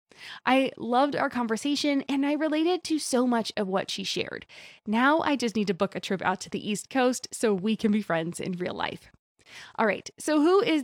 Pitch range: 195-270 Hz